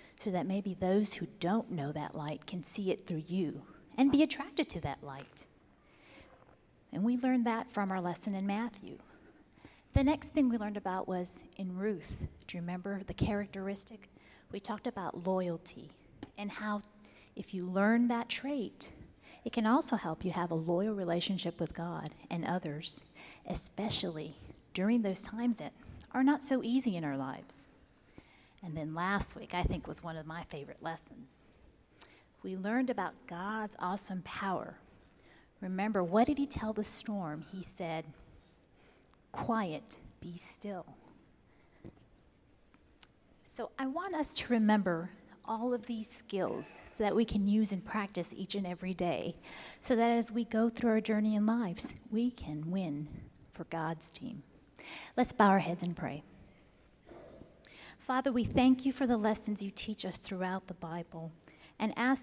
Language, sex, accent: English, female, American